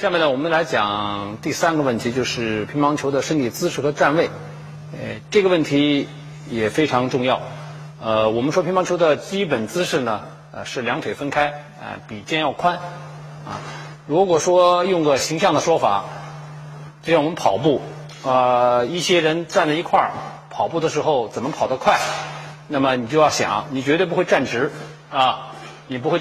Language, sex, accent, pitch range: Chinese, male, native, 130-160 Hz